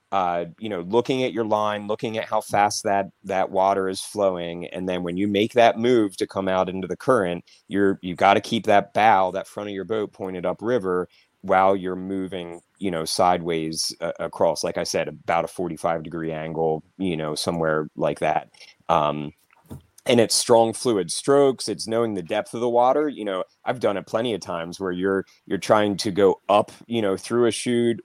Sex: male